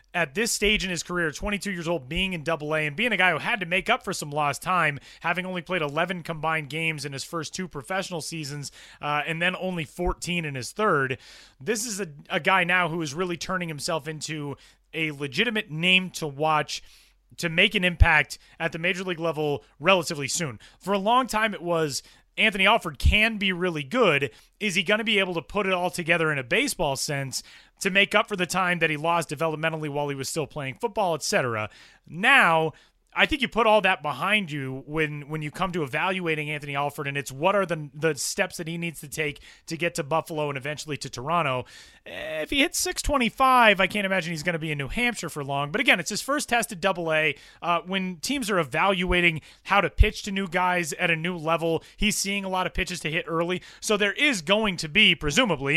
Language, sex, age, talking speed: English, male, 30-49, 225 wpm